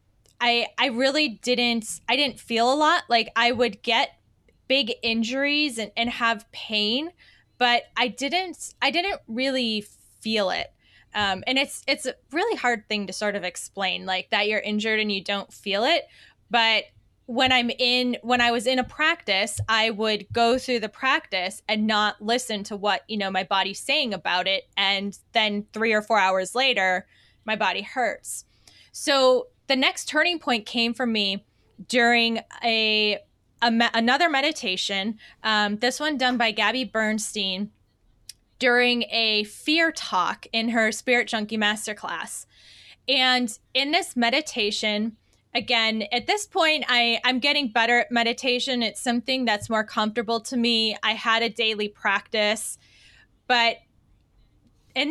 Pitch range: 210-255 Hz